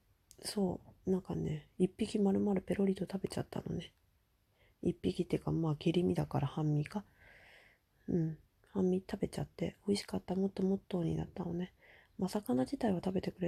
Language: Japanese